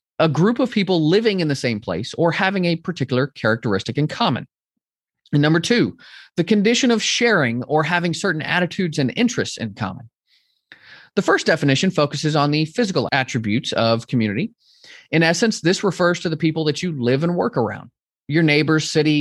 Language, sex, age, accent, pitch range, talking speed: English, male, 30-49, American, 130-180 Hz, 180 wpm